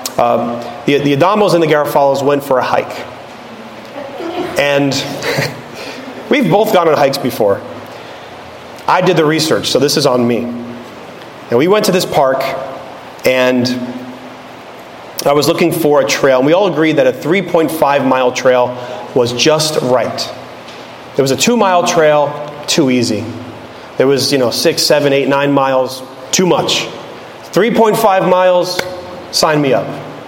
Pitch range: 135-185 Hz